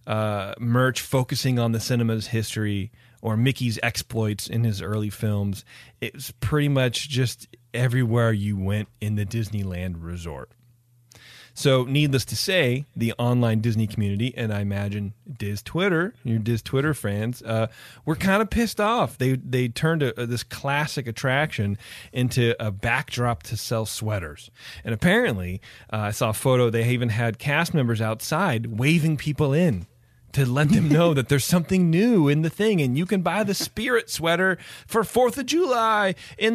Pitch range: 110-145 Hz